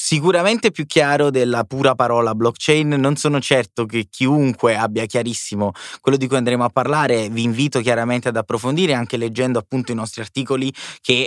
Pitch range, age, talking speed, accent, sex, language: 115-135 Hz, 20-39, 170 wpm, native, male, Italian